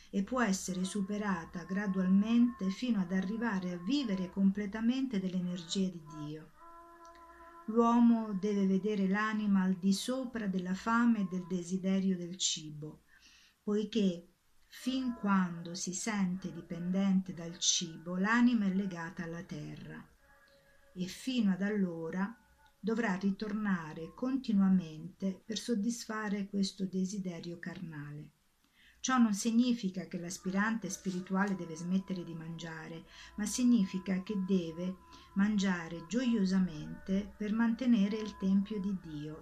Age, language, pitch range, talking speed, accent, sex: 50-69, Italian, 180-215 Hz, 115 wpm, native, female